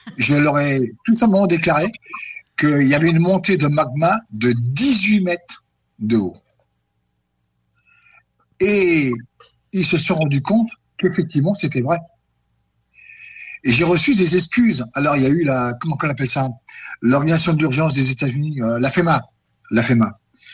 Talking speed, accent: 150 wpm, French